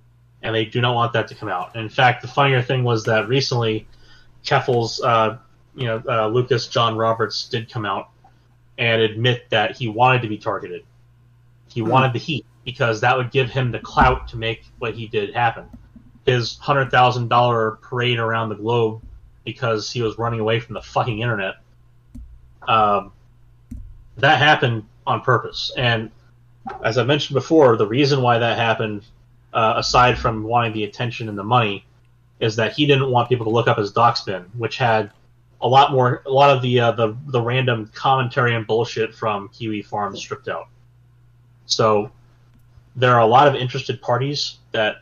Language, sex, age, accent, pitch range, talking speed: English, male, 30-49, American, 110-125 Hz, 175 wpm